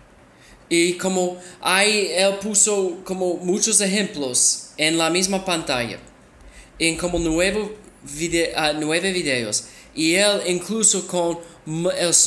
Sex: male